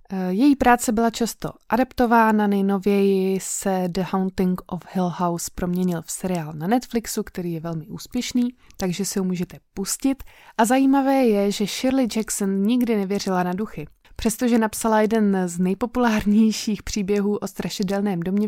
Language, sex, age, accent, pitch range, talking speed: Czech, female, 20-39, native, 180-220 Hz, 145 wpm